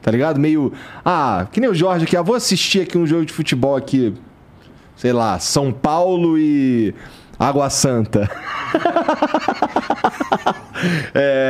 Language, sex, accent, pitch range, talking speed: Portuguese, male, Brazilian, 135-185 Hz, 135 wpm